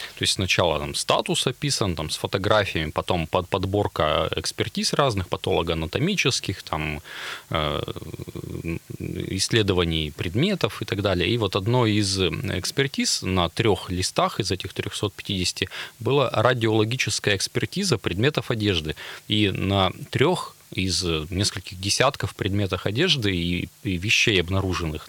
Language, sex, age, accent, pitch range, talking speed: Russian, male, 30-49, native, 90-115 Hz, 110 wpm